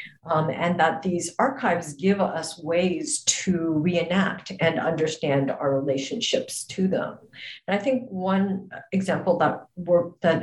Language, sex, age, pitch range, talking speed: English, female, 50-69, 150-195 Hz, 140 wpm